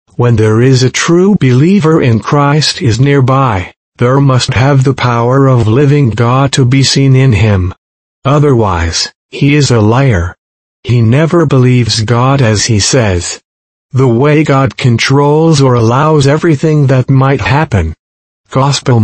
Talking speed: 145 wpm